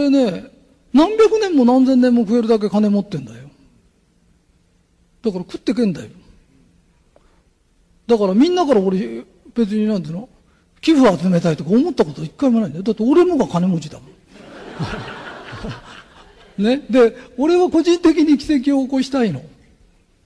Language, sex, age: Japanese, male, 40-59